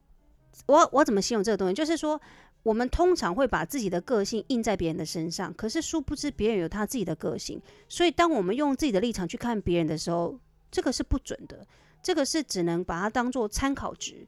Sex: female